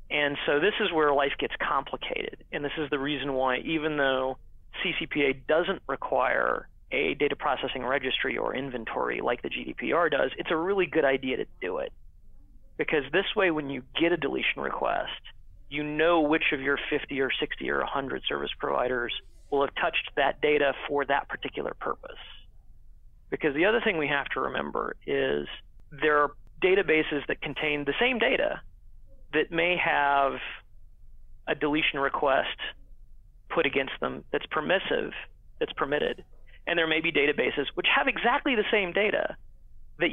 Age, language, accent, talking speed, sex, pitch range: 40-59, English, American, 165 wpm, male, 135-175 Hz